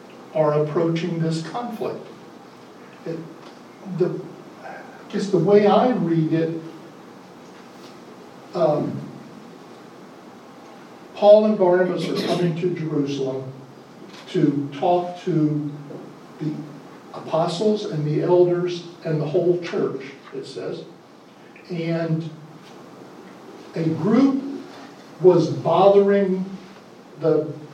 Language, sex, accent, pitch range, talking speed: English, male, American, 150-180 Hz, 80 wpm